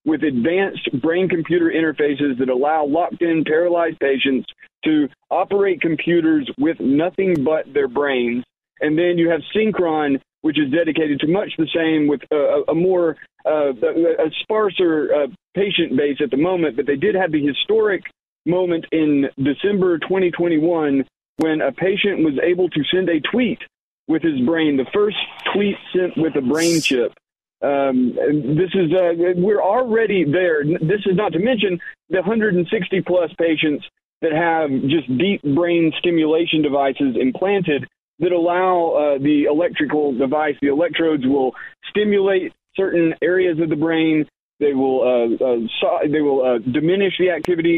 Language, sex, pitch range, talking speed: English, male, 150-195 Hz, 150 wpm